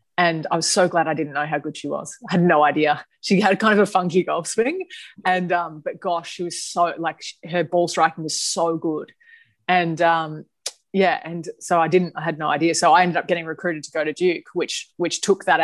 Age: 20-39